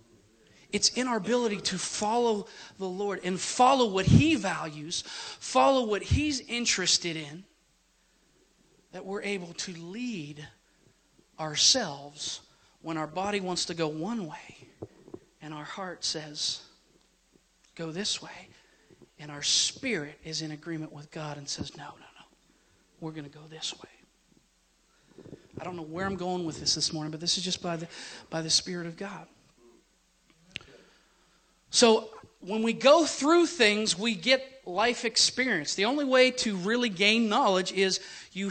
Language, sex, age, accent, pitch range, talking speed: English, male, 40-59, American, 170-235 Hz, 150 wpm